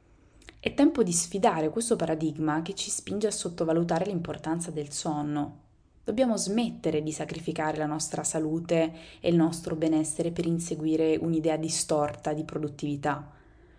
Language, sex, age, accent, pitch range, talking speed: Italian, female, 20-39, native, 150-180 Hz, 135 wpm